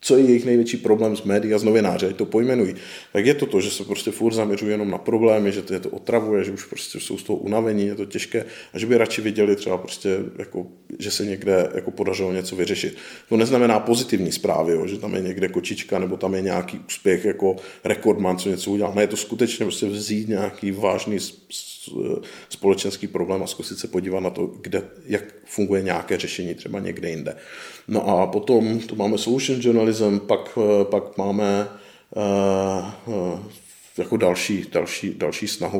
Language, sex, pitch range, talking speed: Czech, male, 100-110 Hz, 190 wpm